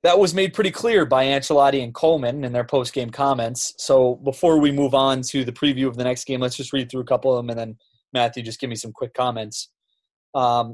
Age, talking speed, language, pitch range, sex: 20-39, 240 wpm, English, 120-140 Hz, male